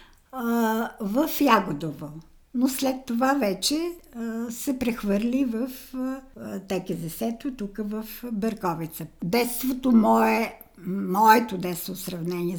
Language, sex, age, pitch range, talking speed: Bulgarian, female, 60-79, 195-260 Hz, 95 wpm